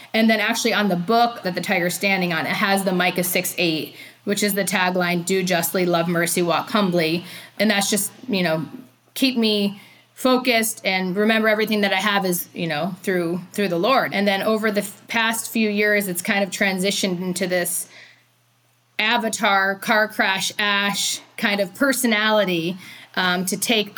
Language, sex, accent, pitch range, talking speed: English, female, American, 180-220 Hz, 180 wpm